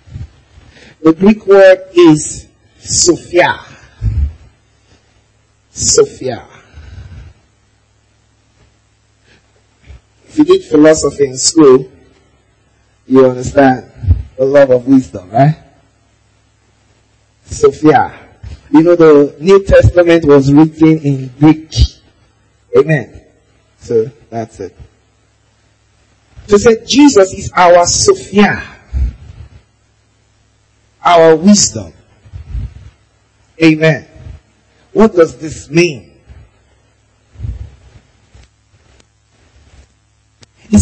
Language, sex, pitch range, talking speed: English, male, 105-160 Hz, 70 wpm